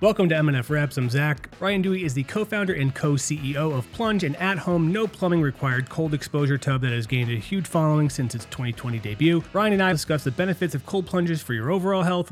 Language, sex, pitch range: English, male, 125-165 Hz